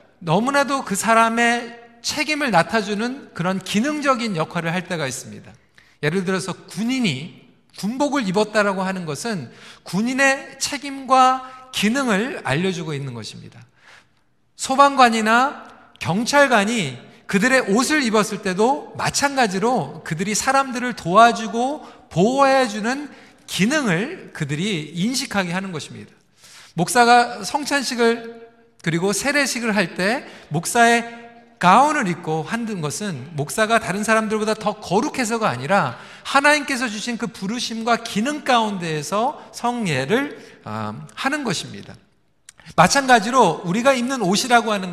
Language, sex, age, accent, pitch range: Korean, male, 40-59, native, 185-250 Hz